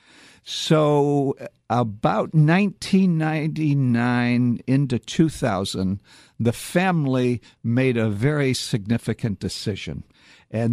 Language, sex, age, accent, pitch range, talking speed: English, male, 60-79, American, 120-185 Hz, 75 wpm